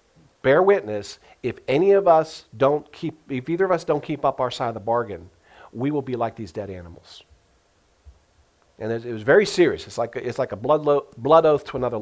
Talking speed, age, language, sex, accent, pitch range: 215 wpm, 50-69, English, male, American, 115-165 Hz